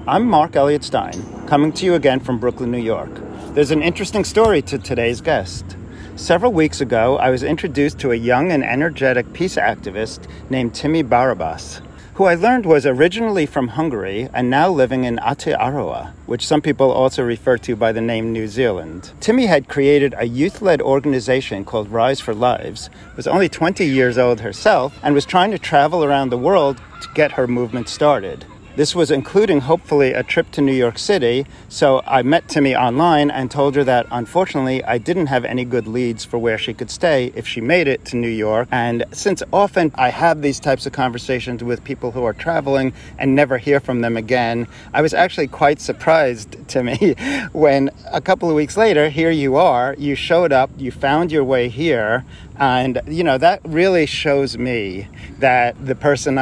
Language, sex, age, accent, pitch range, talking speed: English, male, 40-59, American, 120-145 Hz, 190 wpm